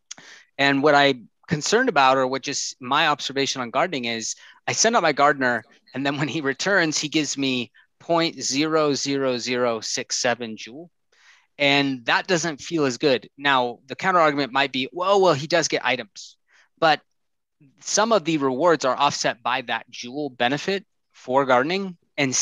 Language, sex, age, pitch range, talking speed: English, male, 20-39, 125-160 Hz, 160 wpm